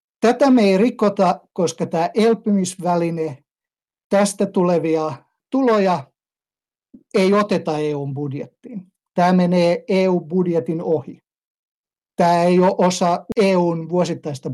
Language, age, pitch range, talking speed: Finnish, 60-79, 155-190 Hz, 100 wpm